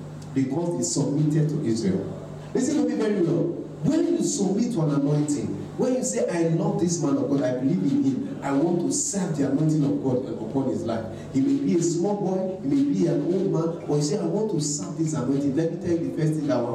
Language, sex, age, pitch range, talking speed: English, male, 40-59, 140-180 Hz, 250 wpm